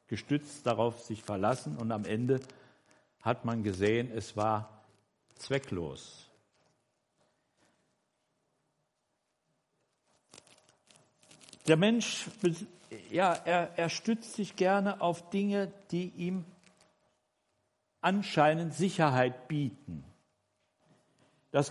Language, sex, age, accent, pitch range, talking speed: German, male, 60-79, German, 125-180 Hz, 80 wpm